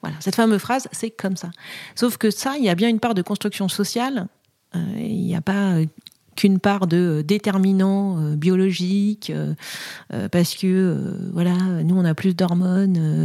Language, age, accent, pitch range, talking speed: French, 40-59, French, 175-220 Hz, 180 wpm